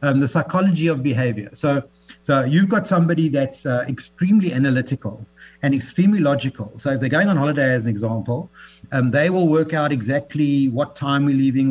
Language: English